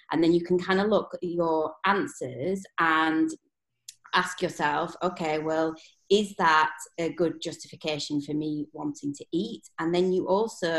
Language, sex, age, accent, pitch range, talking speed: English, female, 20-39, British, 150-180 Hz, 160 wpm